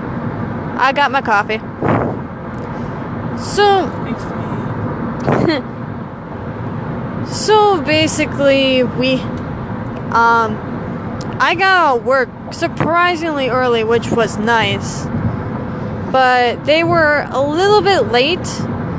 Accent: American